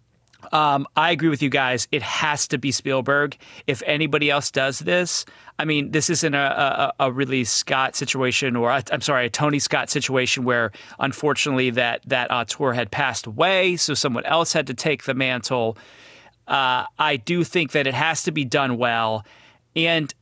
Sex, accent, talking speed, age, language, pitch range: male, American, 185 wpm, 30-49, English, 125-155 Hz